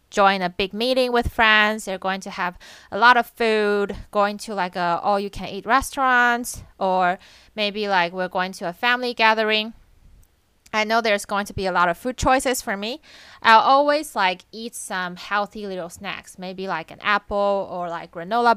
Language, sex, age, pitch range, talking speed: English, female, 20-39, 185-245 Hz, 185 wpm